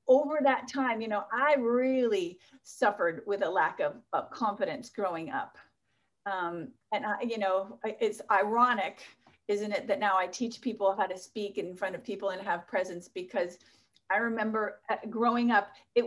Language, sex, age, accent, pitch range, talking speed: English, female, 40-59, American, 200-255 Hz, 170 wpm